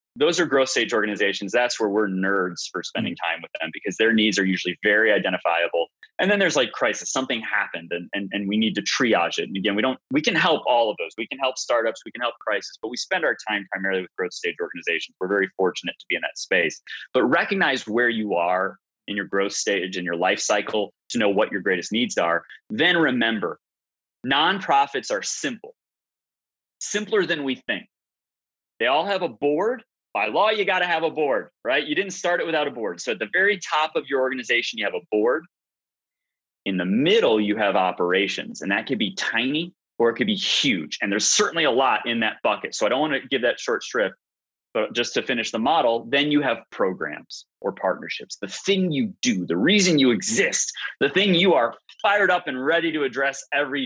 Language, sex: English, male